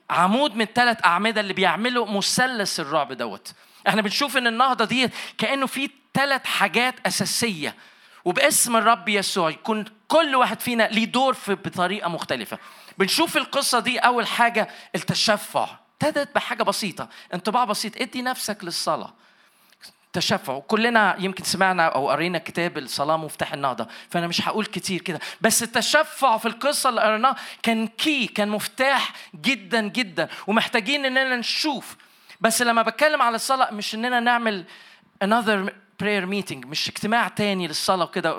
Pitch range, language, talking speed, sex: 200-265 Hz, Arabic, 140 wpm, male